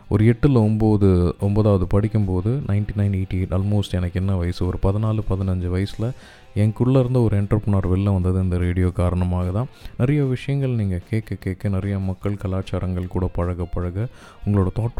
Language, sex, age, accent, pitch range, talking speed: Tamil, male, 20-39, native, 90-105 Hz, 150 wpm